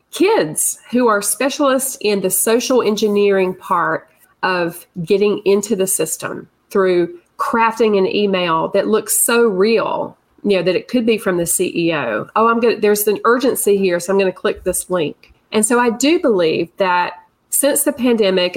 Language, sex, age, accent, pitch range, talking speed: English, female, 40-59, American, 190-235 Hz, 180 wpm